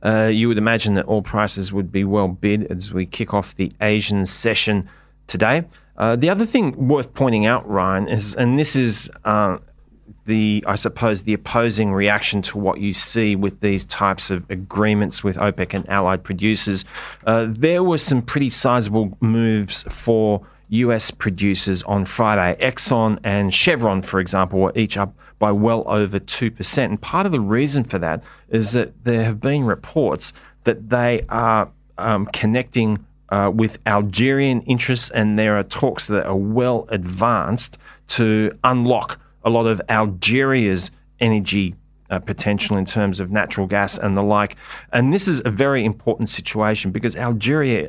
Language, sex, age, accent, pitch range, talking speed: English, male, 30-49, Australian, 100-115 Hz, 165 wpm